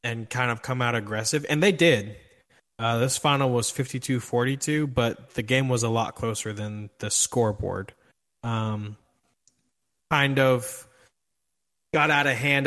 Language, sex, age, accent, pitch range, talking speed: English, male, 20-39, American, 110-130 Hz, 145 wpm